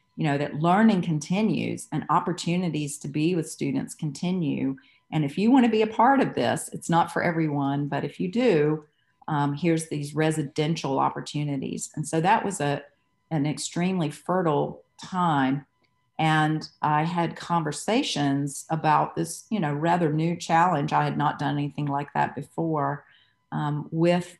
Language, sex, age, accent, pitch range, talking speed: English, female, 40-59, American, 145-165 Hz, 160 wpm